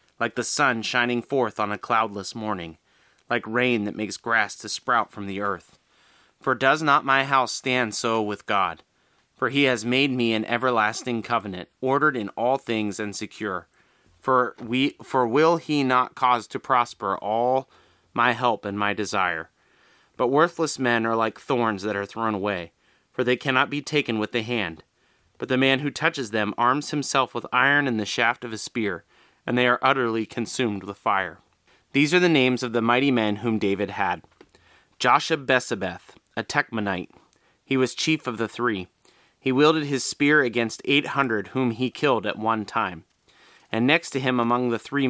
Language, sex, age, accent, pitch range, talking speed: English, male, 30-49, American, 110-130 Hz, 185 wpm